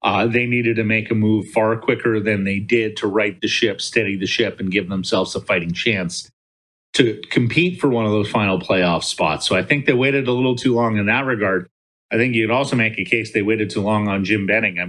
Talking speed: 245 wpm